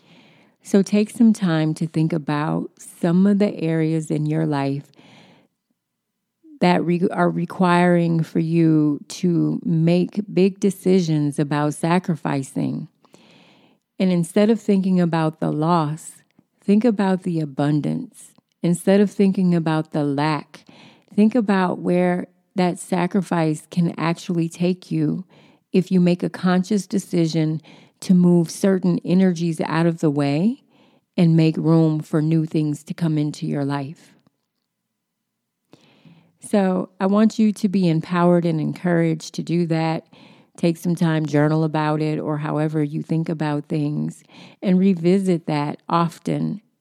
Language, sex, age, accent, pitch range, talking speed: English, female, 40-59, American, 155-190 Hz, 135 wpm